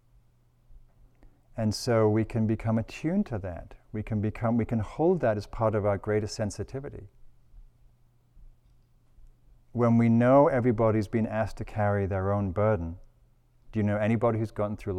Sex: male